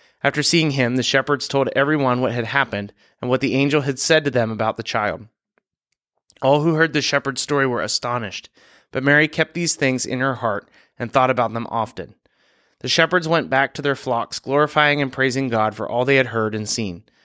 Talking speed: 210 wpm